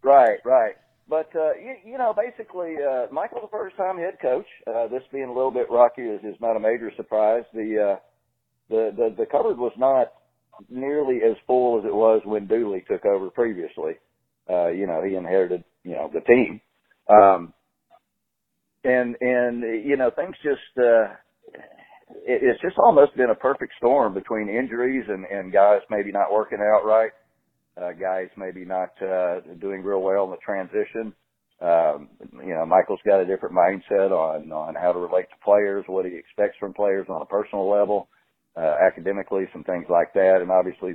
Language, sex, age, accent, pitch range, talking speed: English, male, 50-69, American, 95-135 Hz, 180 wpm